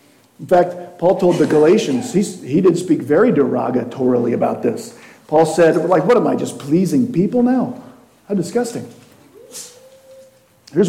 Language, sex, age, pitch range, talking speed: English, male, 50-69, 155-235 Hz, 145 wpm